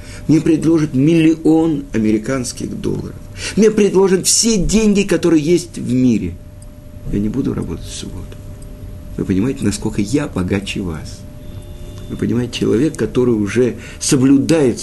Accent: native